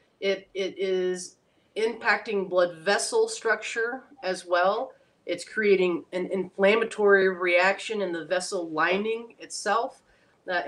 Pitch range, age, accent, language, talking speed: 175-200 Hz, 30-49, American, English, 110 wpm